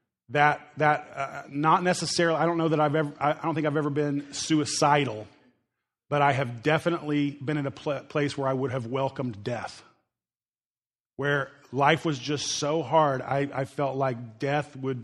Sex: male